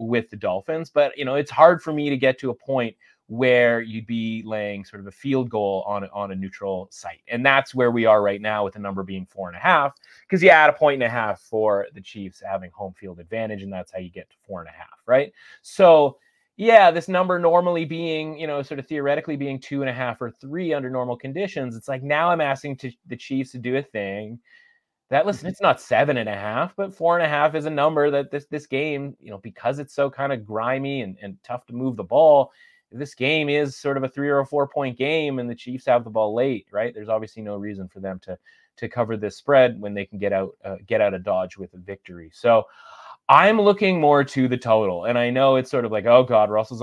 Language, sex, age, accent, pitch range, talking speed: English, male, 30-49, American, 110-145 Hz, 255 wpm